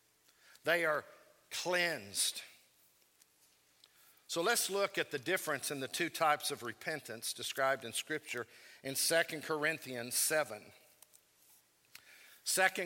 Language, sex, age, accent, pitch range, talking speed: English, male, 50-69, American, 150-185 Hz, 105 wpm